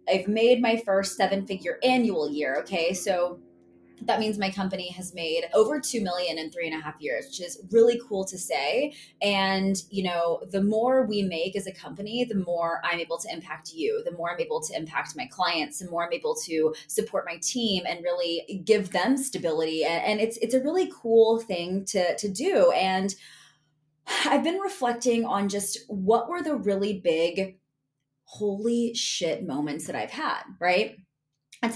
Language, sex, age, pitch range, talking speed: English, female, 20-39, 170-230 Hz, 185 wpm